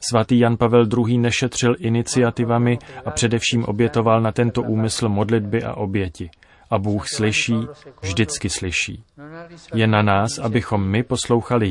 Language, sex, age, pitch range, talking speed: Czech, male, 30-49, 105-120 Hz, 135 wpm